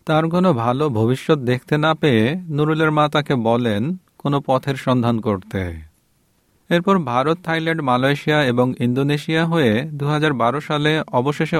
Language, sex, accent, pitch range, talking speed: Bengali, male, native, 115-150 Hz, 130 wpm